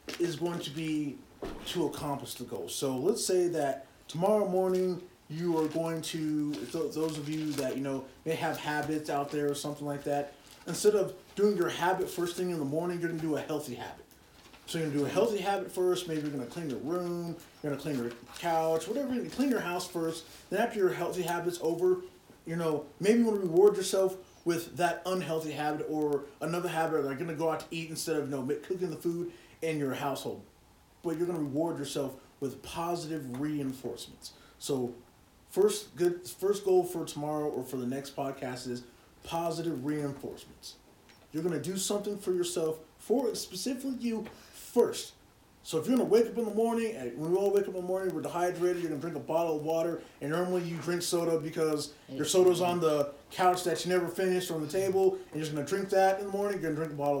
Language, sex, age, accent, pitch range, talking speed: English, male, 30-49, American, 145-180 Hz, 220 wpm